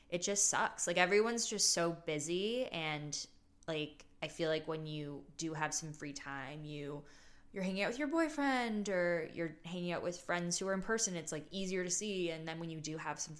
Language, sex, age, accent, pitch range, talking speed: English, female, 20-39, American, 150-175 Hz, 220 wpm